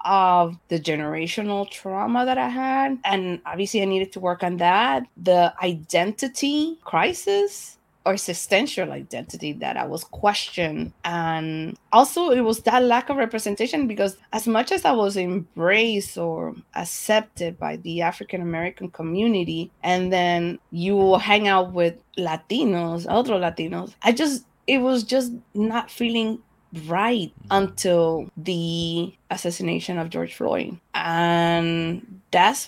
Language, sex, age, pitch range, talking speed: English, female, 20-39, 170-220 Hz, 130 wpm